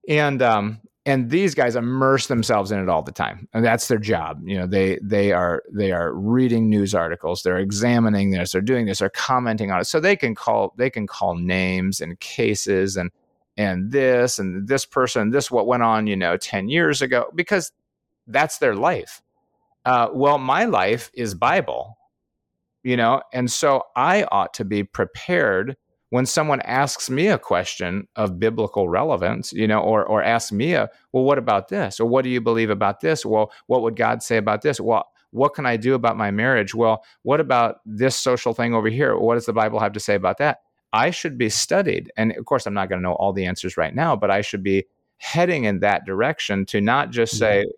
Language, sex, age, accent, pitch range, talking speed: English, male, 30-49, American, 100-130 Hz, 210 wpm